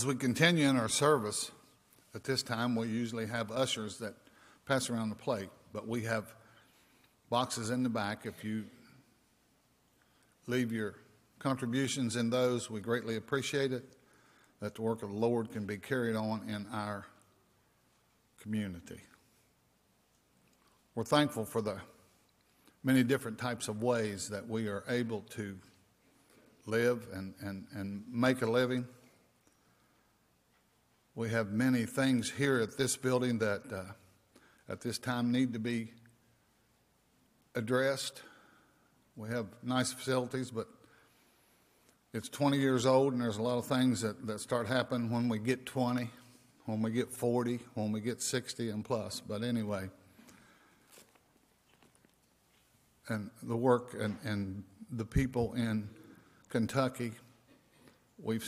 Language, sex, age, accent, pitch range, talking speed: English, male, 50-69, American, 110-125 Hz, 135 wpm